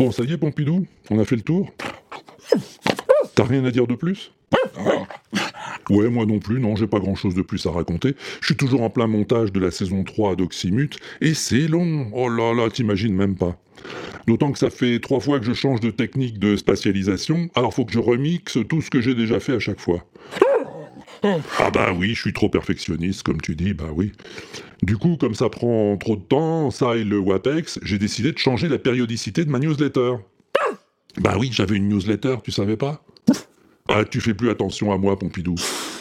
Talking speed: 210 wpm